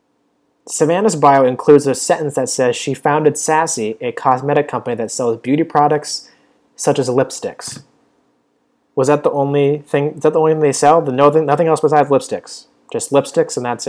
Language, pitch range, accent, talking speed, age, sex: English, 130-165 Hz, American, 185 wpm, 30-49, male